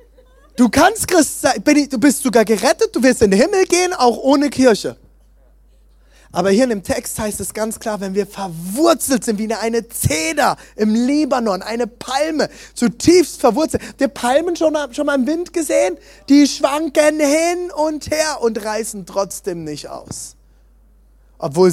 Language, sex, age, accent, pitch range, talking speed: German, male, 20-39, German, 175-275 Hz, 155 wpm